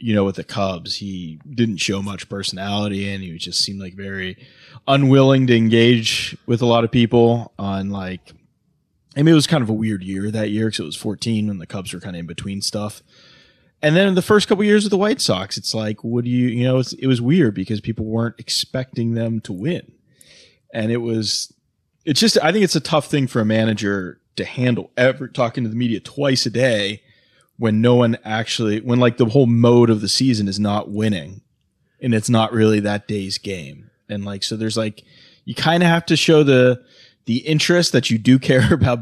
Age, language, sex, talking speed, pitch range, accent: 20-39, English, male, 220 wpm, 105-130 Hz, American